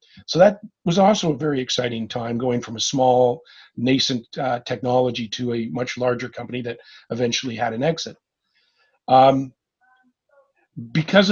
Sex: male